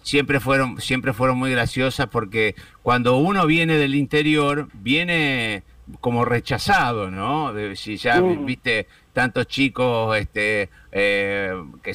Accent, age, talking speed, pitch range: Argentinian, 50-69, 125 wpm, 115-150 Hz